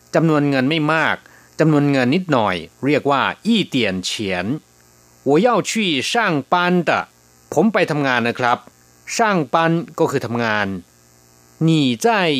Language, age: Thai, 30-49